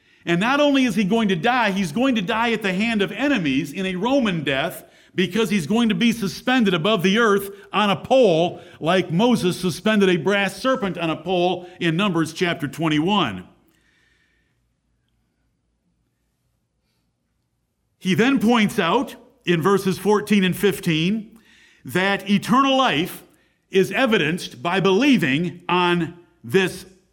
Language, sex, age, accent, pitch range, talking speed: English, male, 50-69, American, 175-225 Hz, 140 wpm